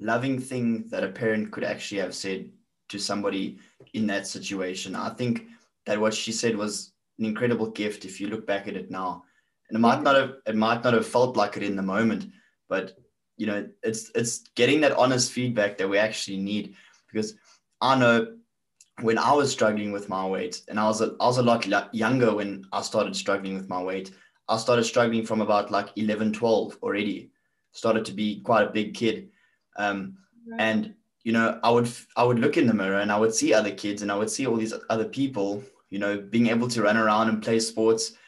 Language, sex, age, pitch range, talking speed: English, male, 20-39, 105-120 Hz, 215 wpm